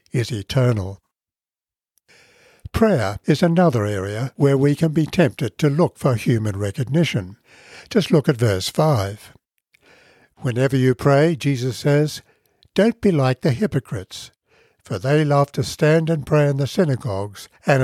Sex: male